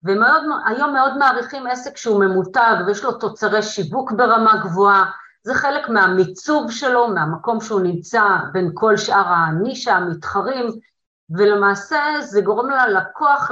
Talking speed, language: 130 wpm, Hebrew